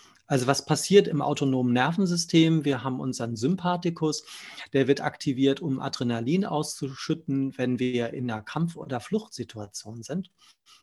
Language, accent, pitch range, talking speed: German, German, 135-165 Hz, 135 wpm